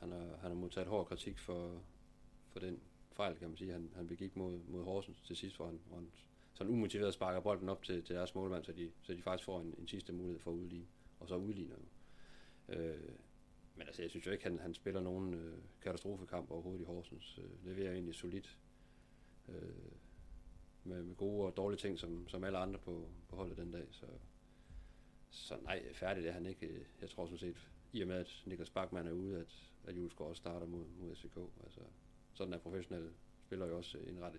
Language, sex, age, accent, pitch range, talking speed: Danish, male, 40-59, native, 85-95 Hz, 210 wpm